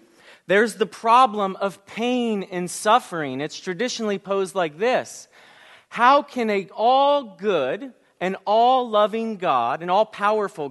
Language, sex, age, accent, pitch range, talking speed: English, male, 40-59, American, 180-230 Hz, 120 wpm